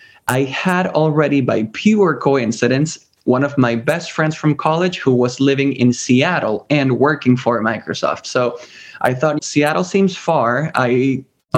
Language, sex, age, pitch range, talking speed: English, male, 20-39, 125-155 Hz, 155 wpm